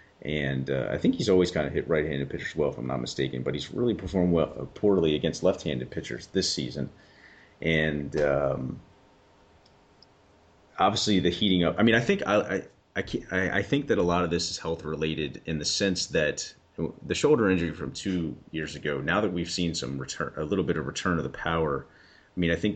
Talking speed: 210 wpm